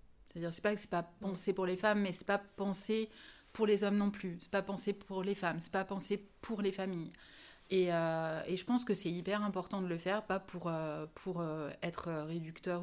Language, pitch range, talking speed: French, 165-200 Hz, 250 wpm